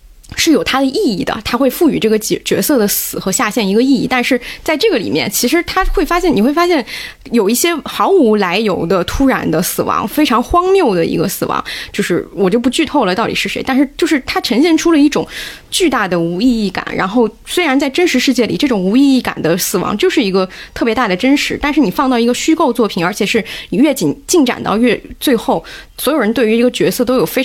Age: 20-39